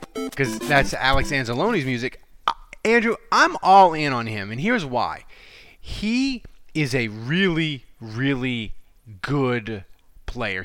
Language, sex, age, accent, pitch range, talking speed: English, male, 20-39, American, 125-175 Hz, 120 wpm